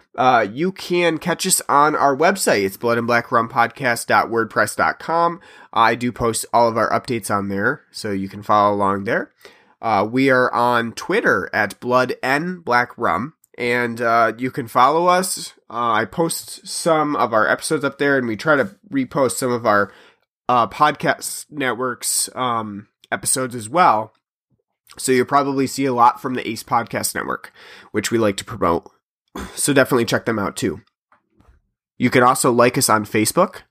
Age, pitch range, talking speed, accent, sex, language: 30-49, 110-135 Hz, 165 wpm, American, male, English